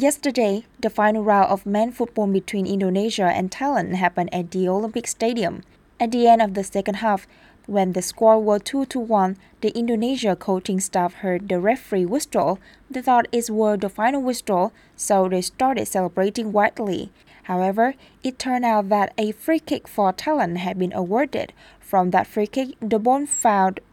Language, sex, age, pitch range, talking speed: Vietnamese, female, 20-39, 190-235 Hz, 175 wpm